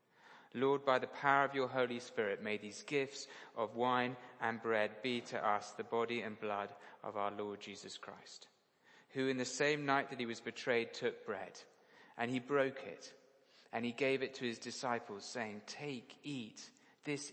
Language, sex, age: English, male, 30-49